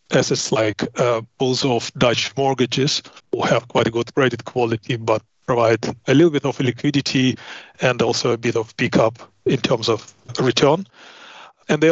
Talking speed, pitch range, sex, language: 165 wpm, 115-140 Hz, male, English